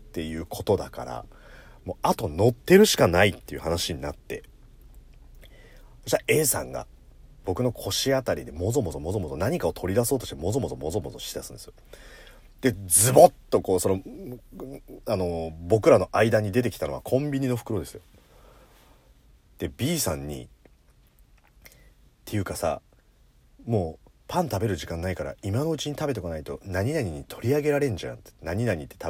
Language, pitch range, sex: Japanese, 85-145 Hz, male